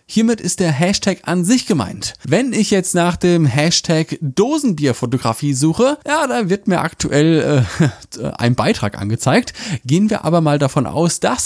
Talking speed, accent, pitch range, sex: 160 wpm, German, 135-200 Hz, male